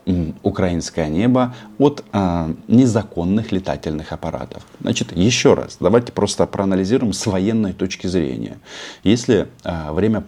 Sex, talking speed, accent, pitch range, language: male, 115 wpm, native, 80-105 Hz, Russian